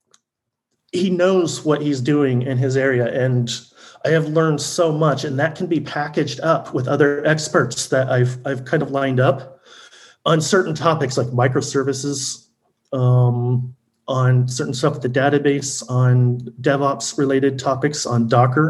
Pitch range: 125-150 Hz